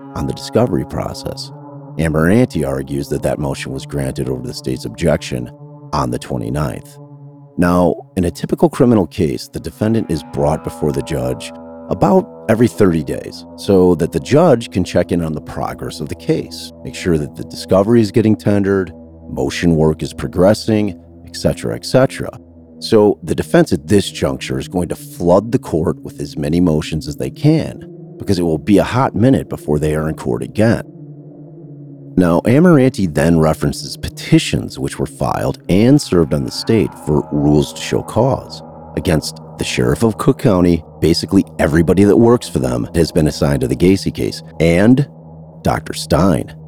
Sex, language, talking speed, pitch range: male, English, 170 wpm, 80-115 Hz